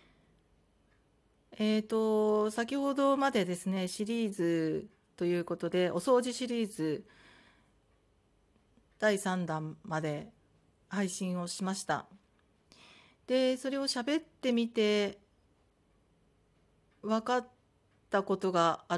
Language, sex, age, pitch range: Japanese, female, 40-59, 170-245 Hz